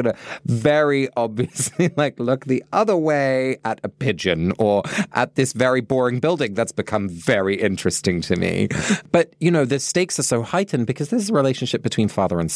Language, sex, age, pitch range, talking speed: English, male, 30-49, 95-130 Hz, 180 wpm